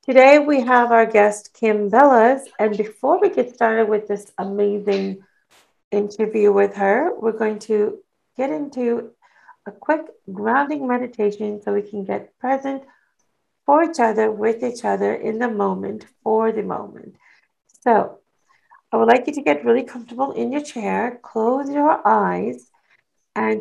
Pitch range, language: 215-265 Hz, English